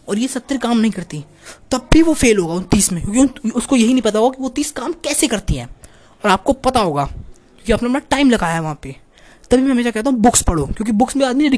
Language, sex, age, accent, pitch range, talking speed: Hindi, female, 20-39, native, 185-245 Hz, 260 wpm